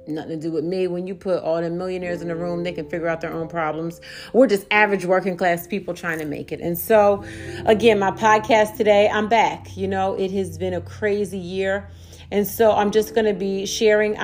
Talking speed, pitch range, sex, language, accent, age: 230 wpm, 170-195 Hz, female, English, American, 40-59